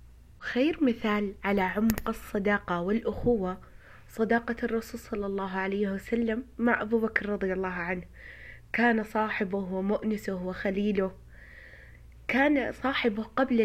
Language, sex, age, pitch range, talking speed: Arabic, female, 20-39, 200-240 Hz, 110 wpm